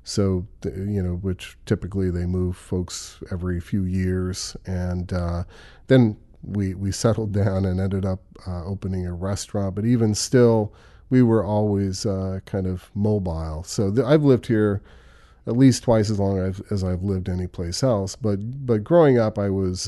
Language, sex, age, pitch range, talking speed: English, male, 40-59, 95-110 Hz, 170 wpm